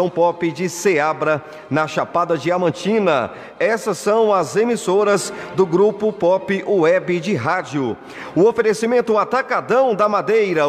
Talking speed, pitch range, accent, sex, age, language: 120 wpm, 180-220 Hz, Brazilian, male, 40-59, Portuguese